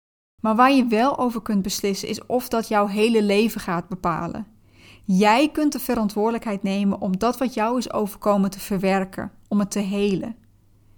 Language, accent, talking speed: Dutch, Dutch, 175 wpm